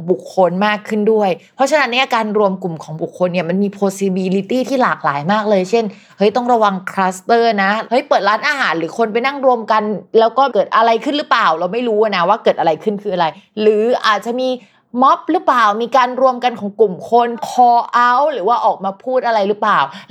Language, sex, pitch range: Thai, female, 185-245 Hz